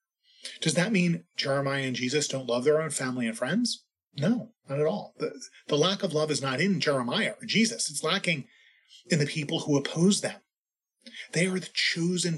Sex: male